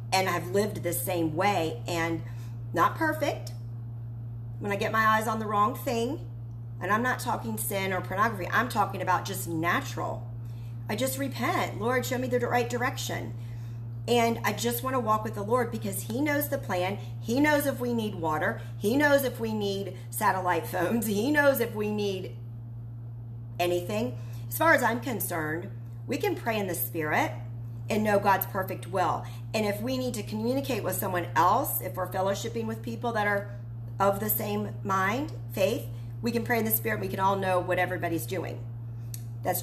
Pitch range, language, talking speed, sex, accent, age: 115-125 Hz, English, 185 wpm, female, American, 40-59